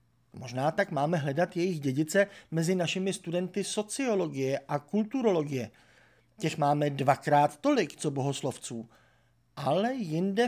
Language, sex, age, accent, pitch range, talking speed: Czech, male, 50-69, native, 130-180 Hz, 115 wpm